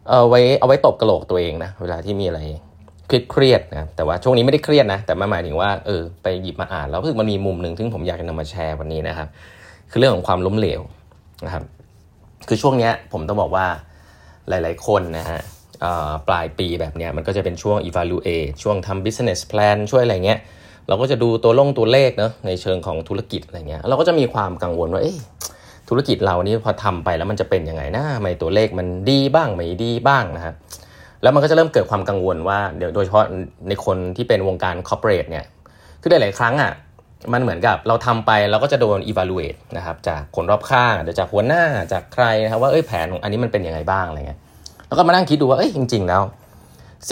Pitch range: 85-115 Hz